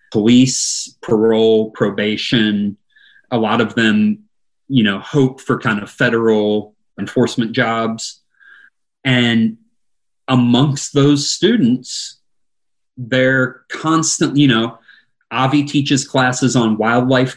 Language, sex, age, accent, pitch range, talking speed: English, male, 30-49, American, 110-135 Hz, 100 wpm